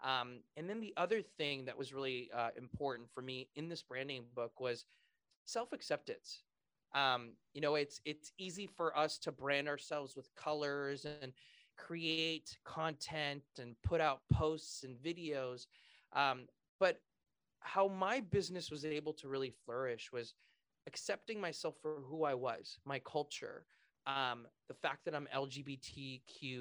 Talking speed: 150 wpm